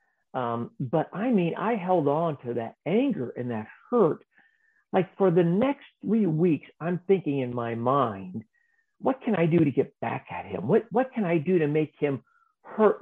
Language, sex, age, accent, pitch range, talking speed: English, male, 50-69, American, 130-220 Hz, 195 wpm